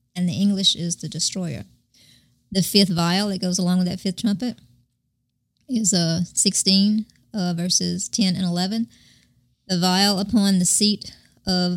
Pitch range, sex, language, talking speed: 170-195 Hz, male, English, 155 wpm